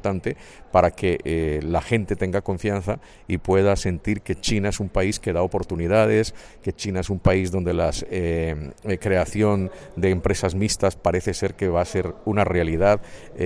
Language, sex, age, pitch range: Chinese, male, 50-69, 85-105 Hz